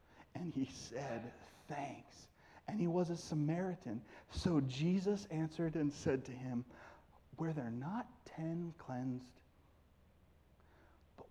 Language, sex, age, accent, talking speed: English, male, 40-59, American, 115 wpm